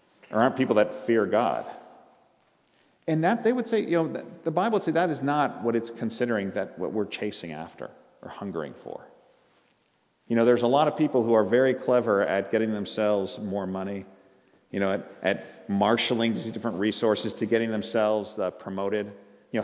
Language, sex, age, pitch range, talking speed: English, male, 50-69, 95-120 Hz, 185 wpm